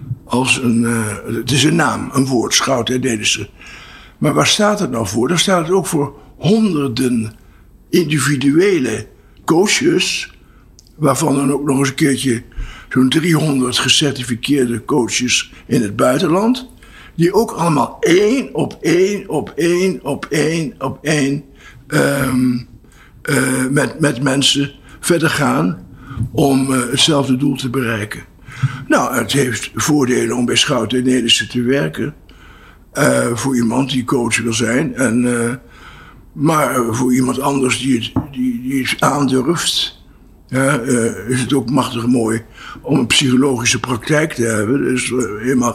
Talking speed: 145 wpm